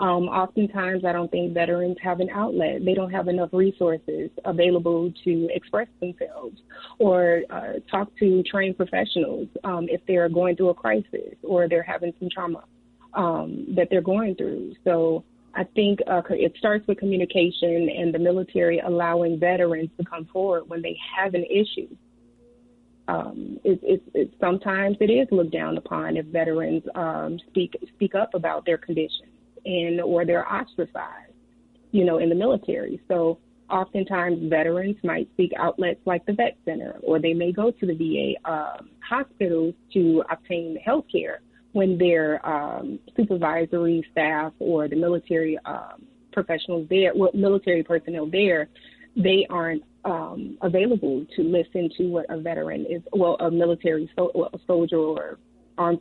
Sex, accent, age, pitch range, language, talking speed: female, American, 30-49, 170-195 Hz, English, 155 wpm